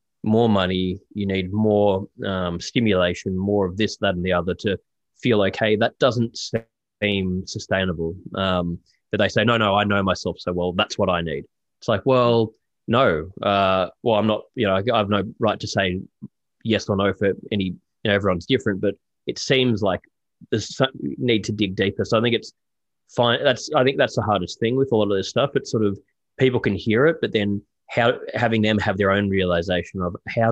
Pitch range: 95-110 Hz